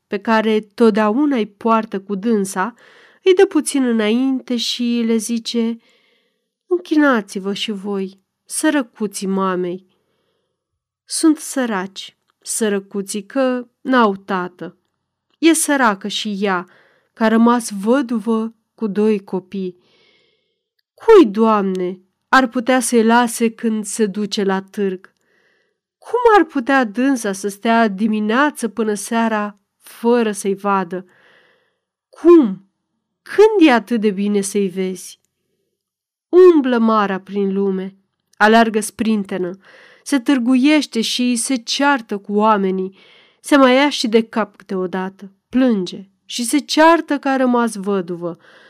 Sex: female